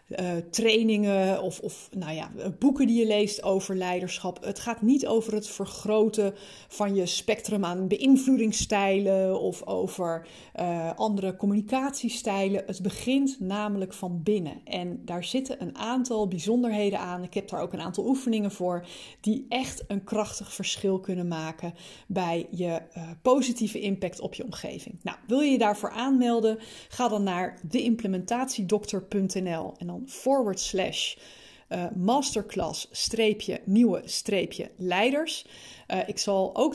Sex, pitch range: female, 185-225 Hz